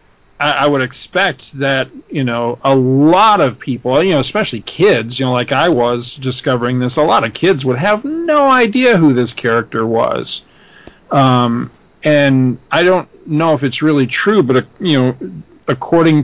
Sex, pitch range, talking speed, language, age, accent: male, 125-150 Hz, 175 wpm, English, 40-59, American